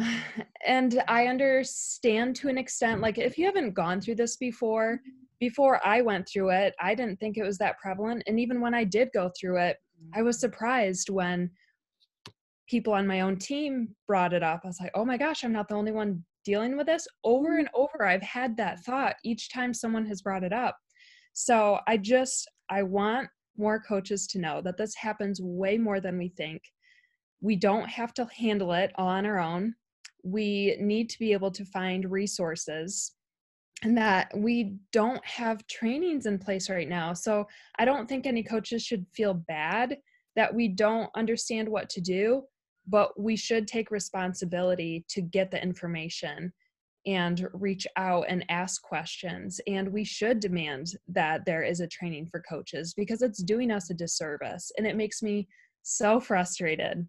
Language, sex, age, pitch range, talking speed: English, female, 20-39, 185-235 Hz, 180 wpm